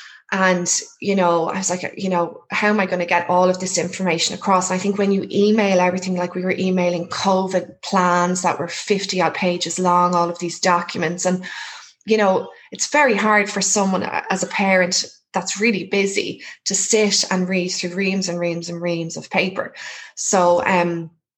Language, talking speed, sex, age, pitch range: English, 190 wpm, female, 20-39, 175-200 Hz